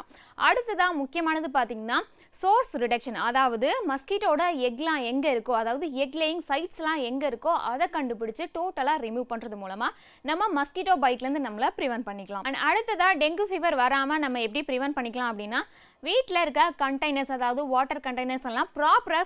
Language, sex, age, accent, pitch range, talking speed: Tamil, female, 20-39, native, 250-335 Hz, 45 wpm